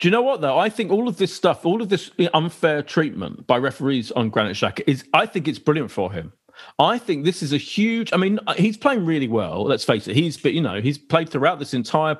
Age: 40-59